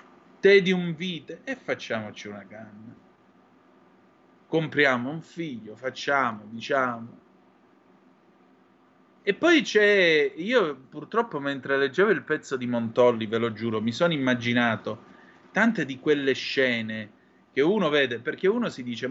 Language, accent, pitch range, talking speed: Italian, native, 120-200 Hz, 130 wpm